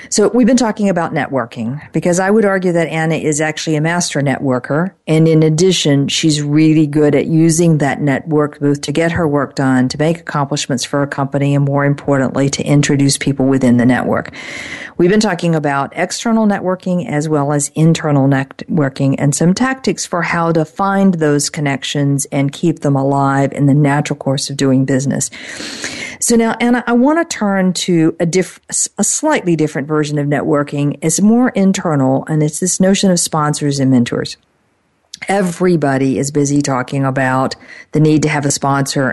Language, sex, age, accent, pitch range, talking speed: English, female, 50-69, American, 140-165 Hz, 180 wpm